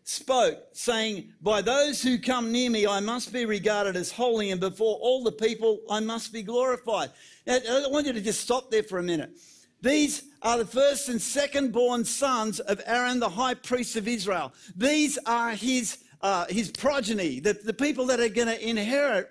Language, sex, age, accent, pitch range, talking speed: English, male, 50-69, Australian, 220-265 Hz, 195 wpm